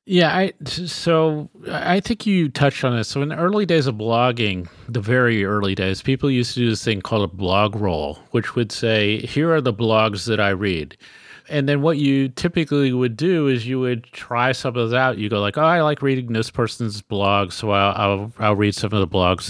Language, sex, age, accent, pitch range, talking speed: English, male, 40-59, American, 105-130 Hz, 230 wpm